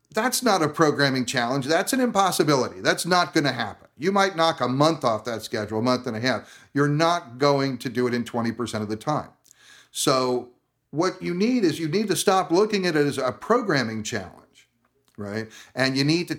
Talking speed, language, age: 210 wpm, English, 50-69